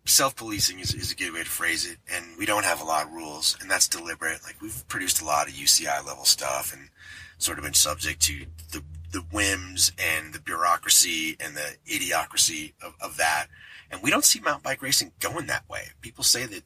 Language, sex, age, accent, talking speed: English, male, 30-49, American, 215 wpm